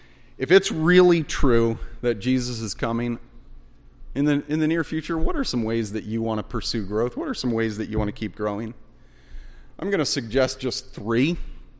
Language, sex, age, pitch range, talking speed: English, male, 30-49, 110-140 Hz, 200 wpm